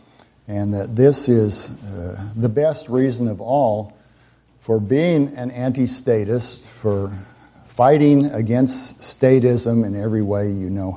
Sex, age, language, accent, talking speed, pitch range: male, 50-69, English, American, 125 wpm, 105-130 Hz